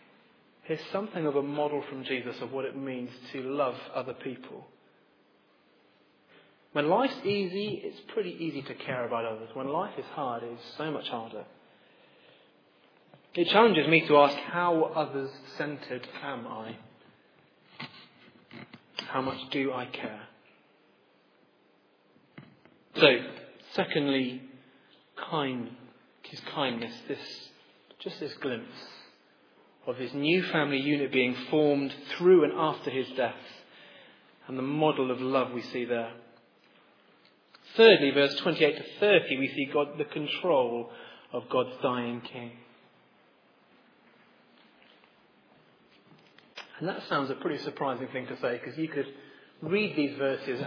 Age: 30-49